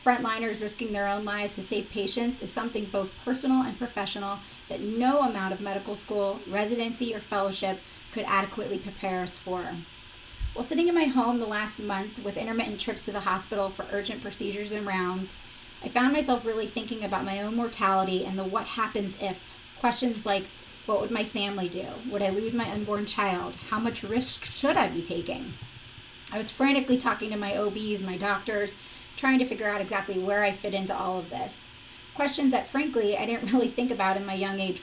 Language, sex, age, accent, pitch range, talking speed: English, female, 30-49, American, 200-240 Hz, 195 wpm